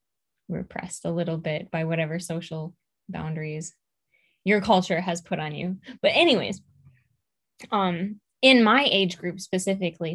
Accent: American